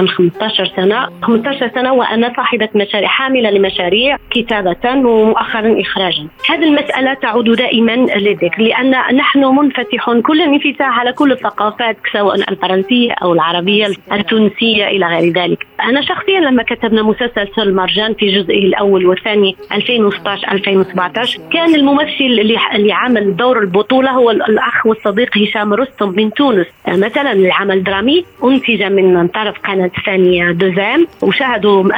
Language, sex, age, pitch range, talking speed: Arabic, female, 30-49, 200-260 Hz, 130 wpm